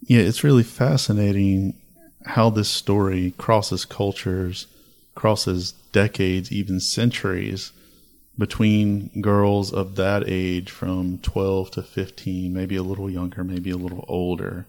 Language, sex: English, male